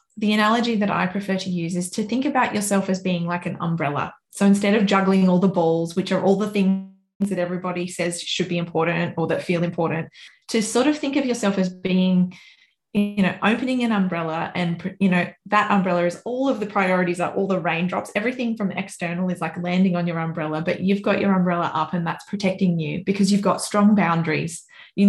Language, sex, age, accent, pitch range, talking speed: English, female, 20-39, Australian, 175-205 Hz, 220 wpm